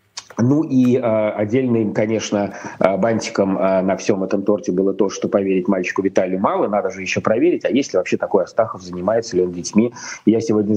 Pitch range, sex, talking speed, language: 100-120 Hz, male, 180 wpm, Russian